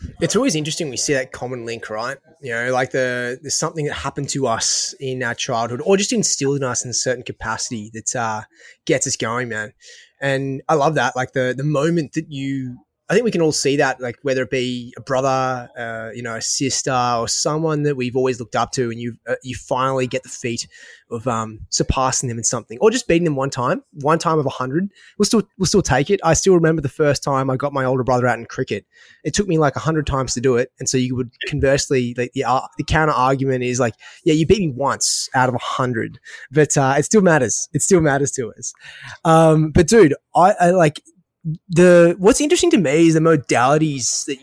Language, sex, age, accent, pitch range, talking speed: English, male, 20-39, Australian, 125-155 Hz, 240 wpm